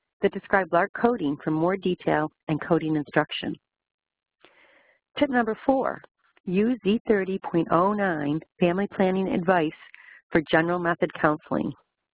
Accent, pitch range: American, 155-195 Hz